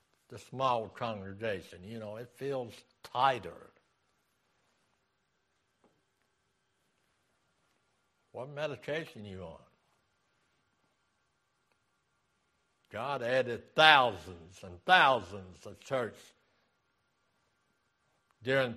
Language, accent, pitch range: English, American, 100-140 Hz